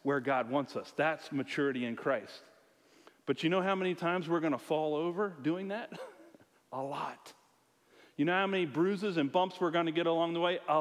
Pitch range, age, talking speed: 155-200 Hz, 40-59, 210 wpm